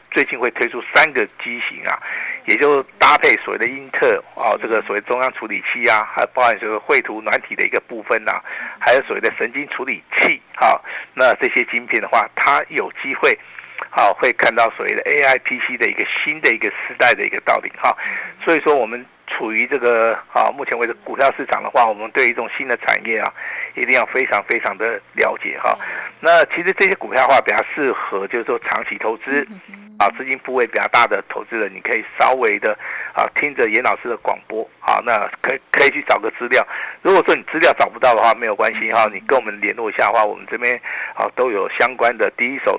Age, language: 50-69, Chinese